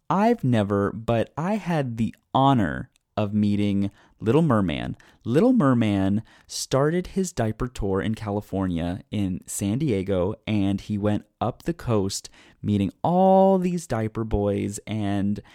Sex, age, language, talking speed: male, 20-39, English, 130 wpm